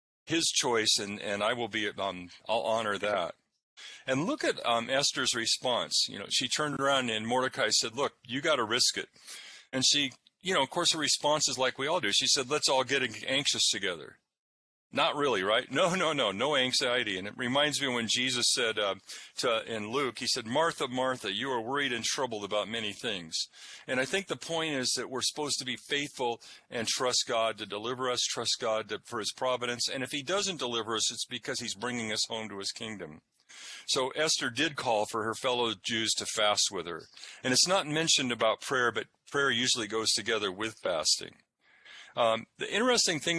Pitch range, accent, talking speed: 110-135 Hz, American, 210 wpm